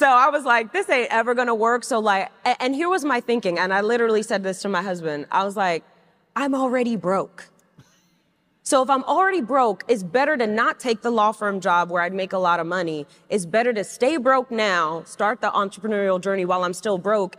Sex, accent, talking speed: female, American, 225 wpm